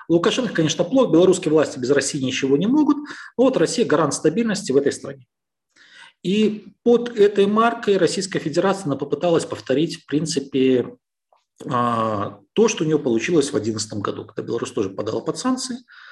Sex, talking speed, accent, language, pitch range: male, 155 wpm, native, Ukrainian, 125-195 Hz